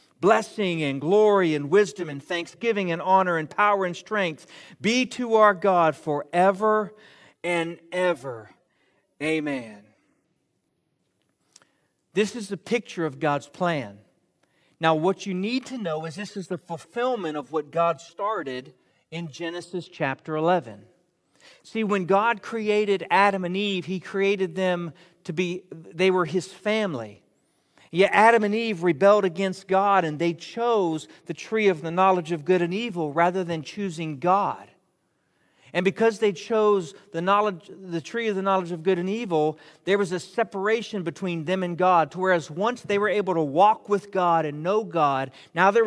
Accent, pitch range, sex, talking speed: American, 165-205 Hz, male, 160 wpm